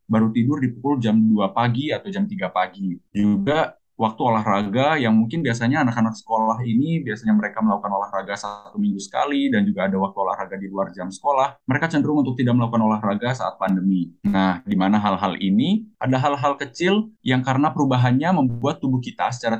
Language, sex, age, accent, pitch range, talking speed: Indonesian, male, 20-39, native, 105-145 Hz, 180 wpm